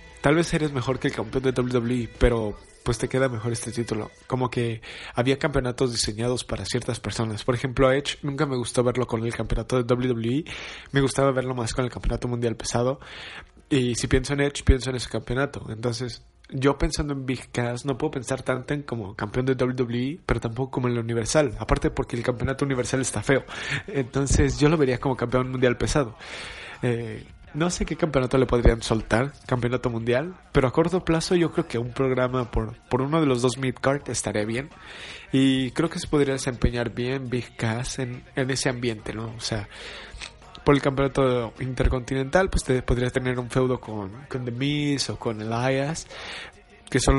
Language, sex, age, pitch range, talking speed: Spanish, male, 20-39, 120-135 Hz, 195 wpm